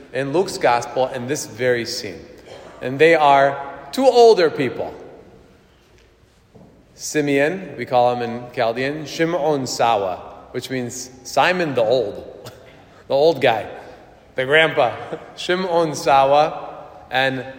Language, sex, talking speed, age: English, male, 115 wpm, 30-49